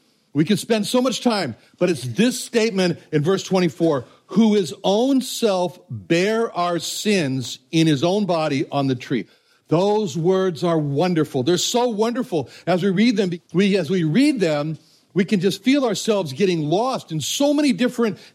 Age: 60-79